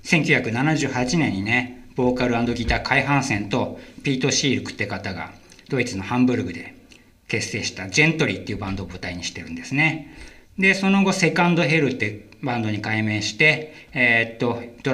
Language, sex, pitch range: Japanese, male, 105-145 Hz